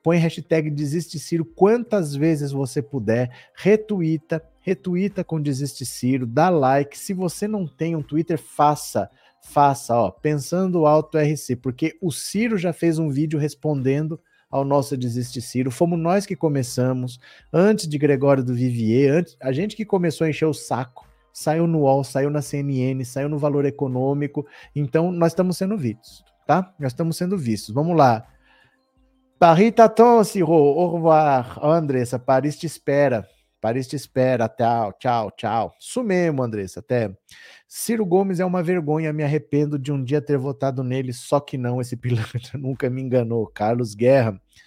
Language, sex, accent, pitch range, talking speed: Portuguese, male, Brazilian, 125-165 Hz, 150 wpm